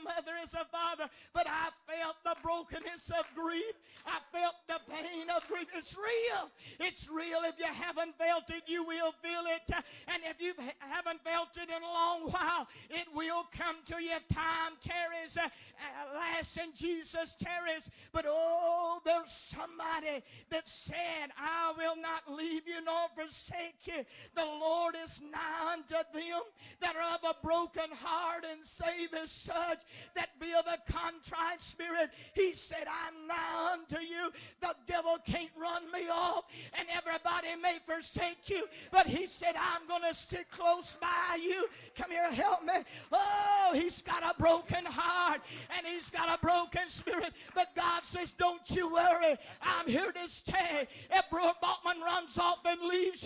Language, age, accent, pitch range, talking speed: English, 50-69, American, 330-350 Hz, 165 wpm